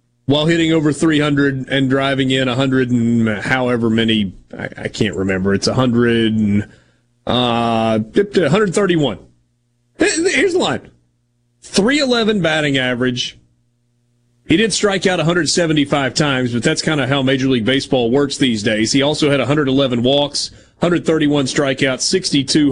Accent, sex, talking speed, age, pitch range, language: American, male, 130 wpm, 30-49, 120-165 Hz, English